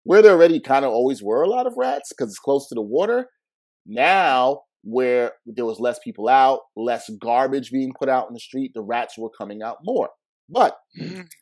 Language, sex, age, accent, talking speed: English, male, 30-49, American, 205 wpm